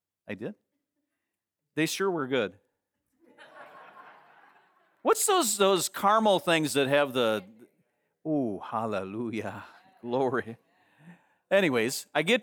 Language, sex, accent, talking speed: English, male, American, 95 wpm